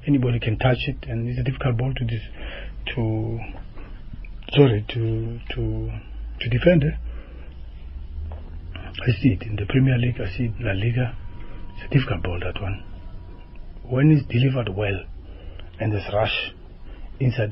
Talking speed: 145 wpm